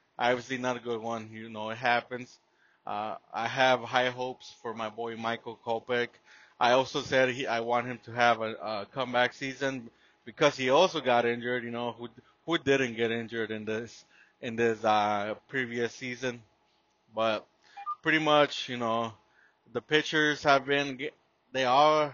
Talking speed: 165 wpm